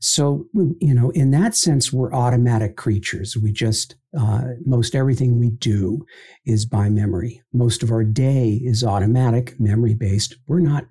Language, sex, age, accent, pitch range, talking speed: English, male, 50-69, American, 110-145 Hz, 155 wpm